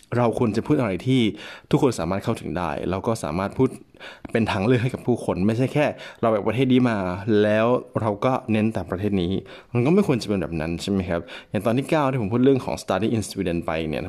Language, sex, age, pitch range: Thai, male, 20-39, 90-125 Hz